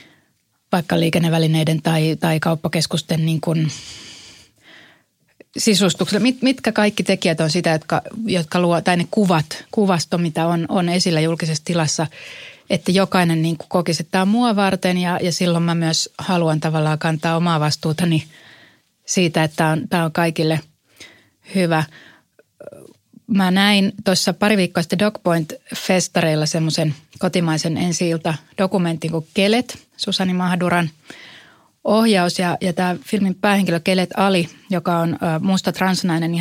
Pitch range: 160-190 Hz